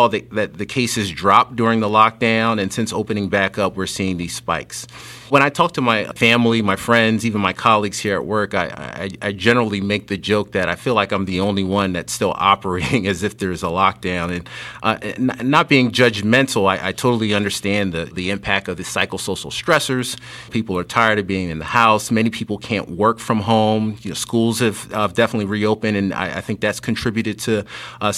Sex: male